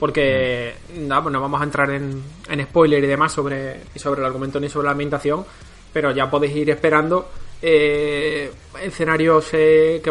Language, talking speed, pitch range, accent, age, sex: Spanish, 170 wpm, 140-160 Hz, Spanish, 20-39, male